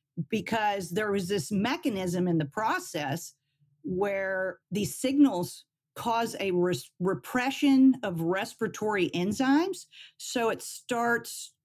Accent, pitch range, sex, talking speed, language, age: American, 170-240 Hz, female, 110 wpm, English, 50-69